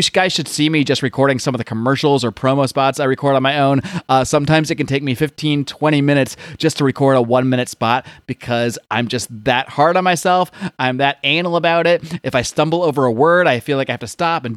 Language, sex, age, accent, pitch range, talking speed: English, male, 30-49, American, 125-150 Hz, 245 wpm